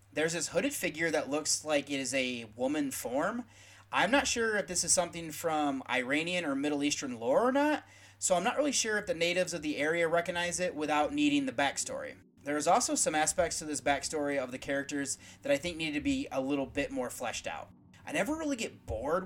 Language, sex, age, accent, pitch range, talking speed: English, male, 30-49, American, 145-225 Hz, 225 wpm